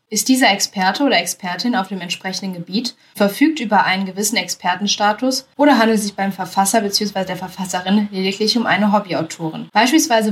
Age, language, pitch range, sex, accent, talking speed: 10-29, German, 190-230 Hz, female, German, 155 wpm